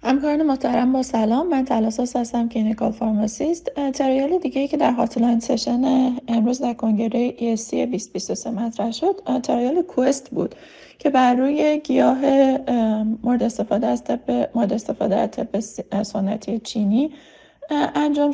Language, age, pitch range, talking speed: Persian, 30-49, 220-275 Hz, 140 wpm